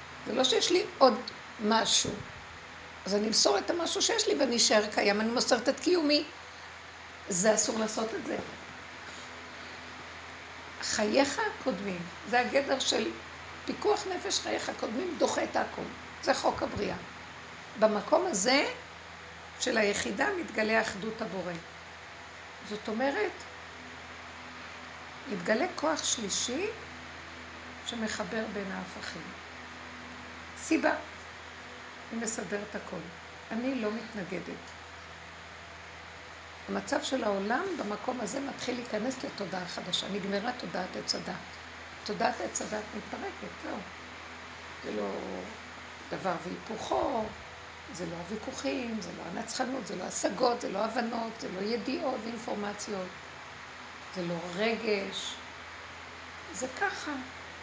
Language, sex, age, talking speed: Hebrew, female, 60-79, 110 wpm